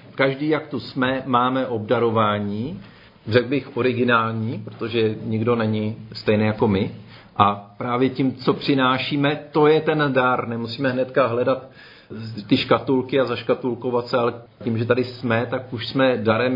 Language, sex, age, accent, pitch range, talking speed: Czech, male, 40-59, native, 115-140 Hz, 150 wpm